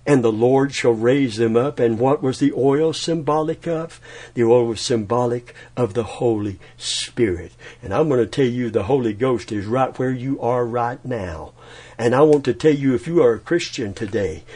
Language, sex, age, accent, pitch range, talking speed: English, male, 60-79, American, 115-140 Hz, 205 wpm